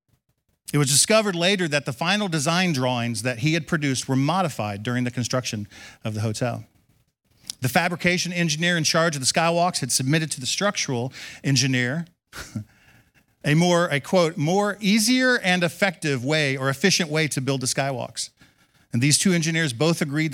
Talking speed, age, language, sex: 170 wpm, 50-69, English, male